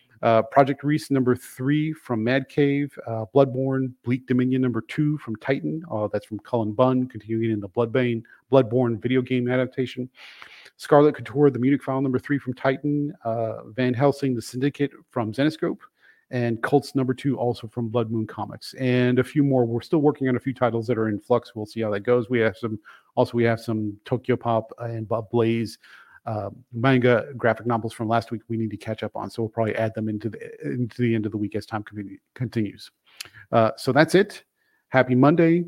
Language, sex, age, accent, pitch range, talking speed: English, male, 40-59, American, 115-135 Hz, 205 wpm